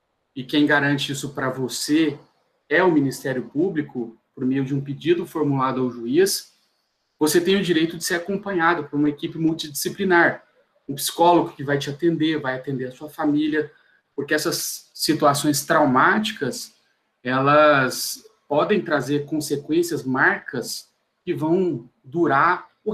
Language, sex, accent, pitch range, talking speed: Portuguese, male, Brazilian, 145-185 Hz, 140 wpm